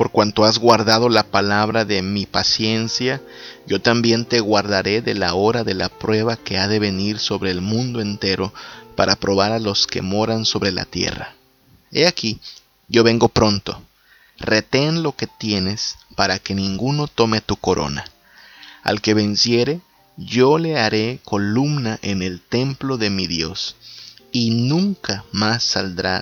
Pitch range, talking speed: 100-120 Hz, 155 wpm